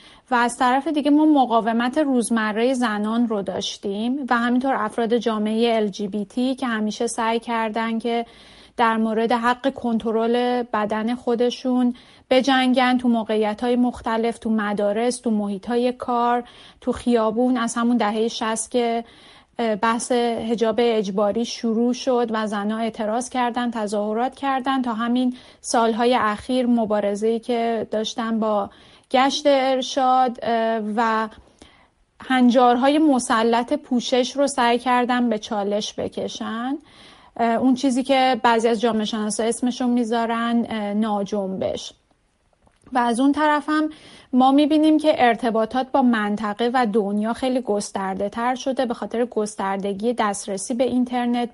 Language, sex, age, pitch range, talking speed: Persian, female, 30-49, 220-255 Hz, 125 wpm